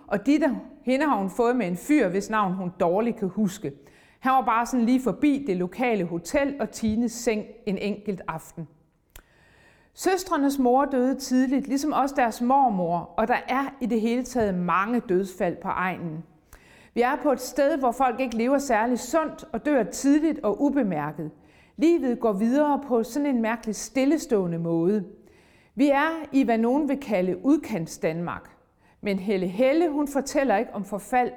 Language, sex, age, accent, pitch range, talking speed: Danish, female, 40-59, native, 195-270 Hz, 170 wpm